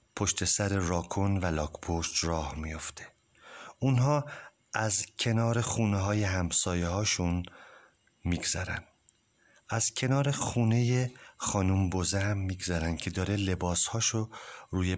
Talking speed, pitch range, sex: 110 wpm, 95-135 Hz, male